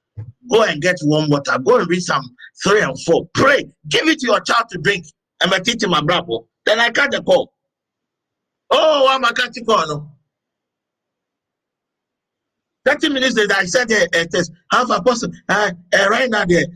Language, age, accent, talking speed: English, 50-69, Nigerian, 175 wpm